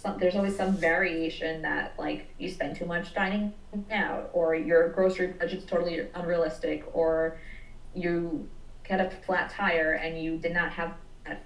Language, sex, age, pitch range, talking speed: English, female, 20-39, 165-195 Hz, 150 wpm